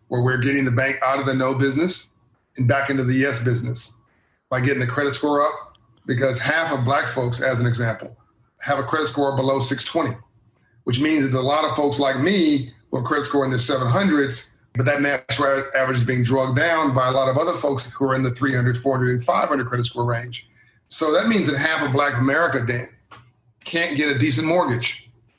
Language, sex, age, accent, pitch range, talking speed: English, male, 40-59, American, 125-145 Hz, 215 wpm